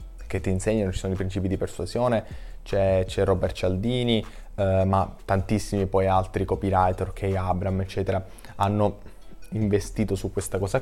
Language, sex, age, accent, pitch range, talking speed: Italian, male, 20-39, native, 95-105 Hz, 145 wpm